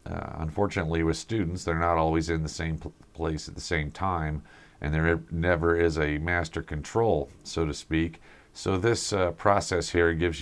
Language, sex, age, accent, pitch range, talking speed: English, male, 50-69, American, 75-90 Hz, 185 wpm